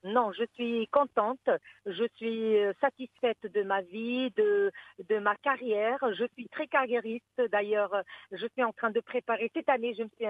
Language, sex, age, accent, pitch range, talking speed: English, female, 50-69, French, 205-250 Hz, 175 wpm